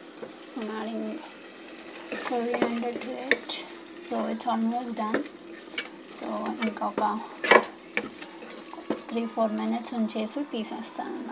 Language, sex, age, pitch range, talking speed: Telugu, female, 20-39, 225-280 Hz, 125 wpm